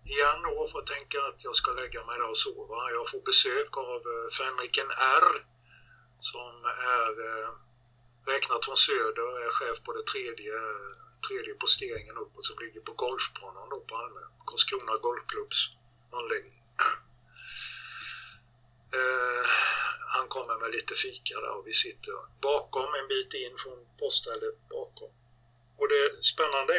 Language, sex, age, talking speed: Swedish, male, 50-69, 135 wpm